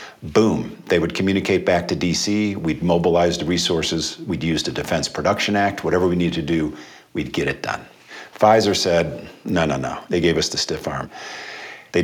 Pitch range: 80-95 Hz